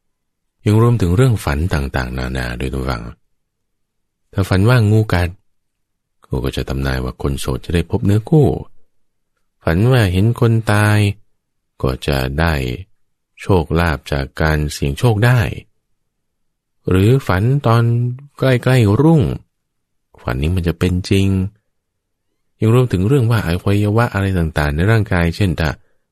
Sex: male